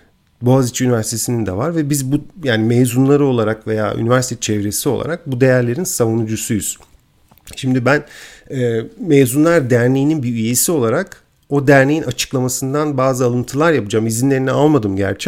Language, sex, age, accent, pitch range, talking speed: Turkish, male, 50-69, native, 115-145 Hz, 135 wpm